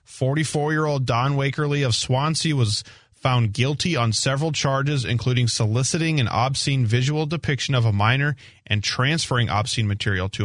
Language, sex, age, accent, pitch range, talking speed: English, male, 30-49, American, 110-135 Hz, 145 wpm